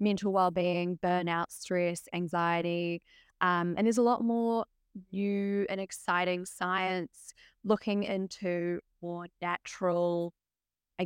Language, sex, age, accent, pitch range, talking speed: English, female, 20-39, Australian, 175-200 Hz, 110 wpm